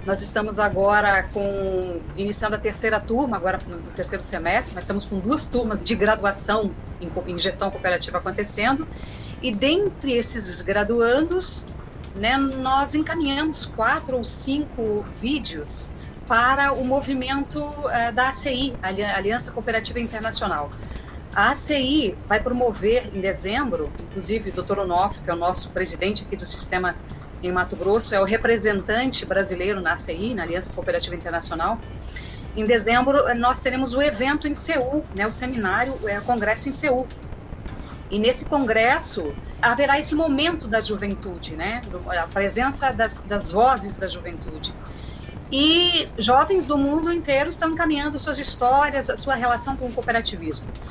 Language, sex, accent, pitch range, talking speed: Portuguese, female, Brazilian, 205-275 Hz, 145 wpm